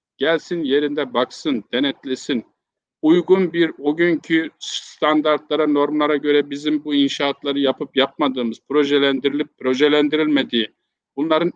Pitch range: 150-205 Hz